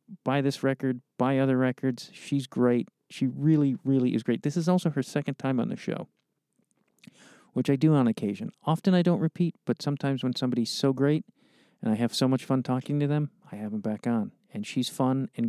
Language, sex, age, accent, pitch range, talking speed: English, male, 40-59, American, 120-150 Hz, 215 wpm